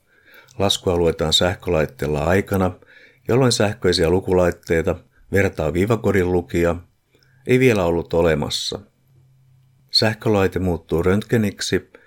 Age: 50-69